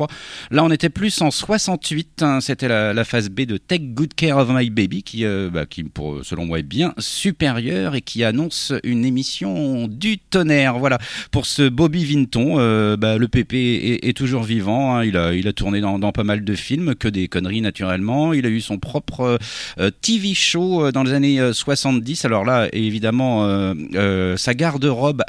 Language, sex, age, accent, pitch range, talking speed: French, male, 40-59, French, 105-150 Hz, 200 wpm